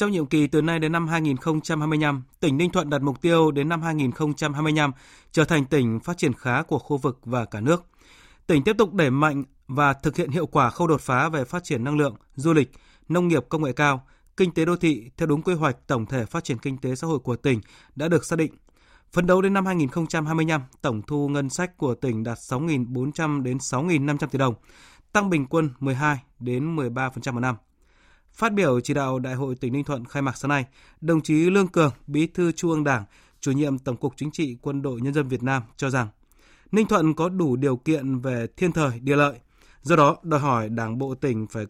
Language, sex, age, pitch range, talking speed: Vietnamese, male, 20-39, 130-160 Hz, 220 wpm